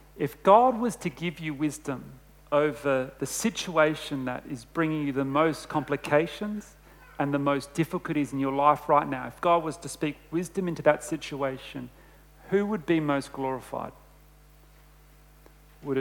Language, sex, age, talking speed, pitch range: English, male, 40-59, 155 wpm, 145-185 Hz